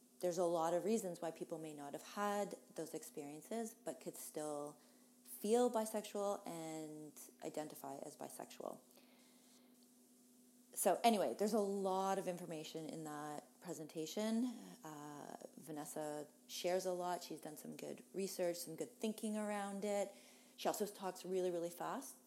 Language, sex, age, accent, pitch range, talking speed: English, female, 30-49, American, 160-240 Hz, 145 wpm